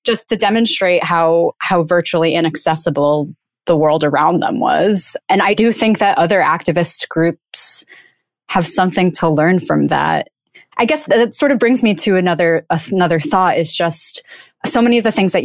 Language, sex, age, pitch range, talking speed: English, female, 20-39, 165-210 Hz, 175 wpm